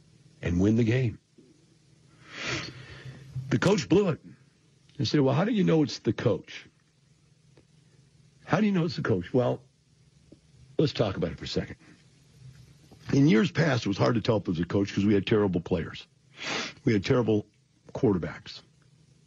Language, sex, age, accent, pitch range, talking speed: English, male, 50-69, American, 115-150 Hz, 170 wpm